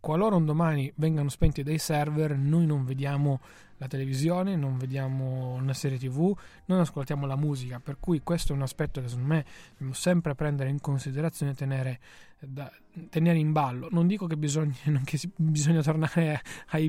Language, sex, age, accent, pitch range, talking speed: Italian, male, 20-39, native, 140-170 Hz, 165 wpm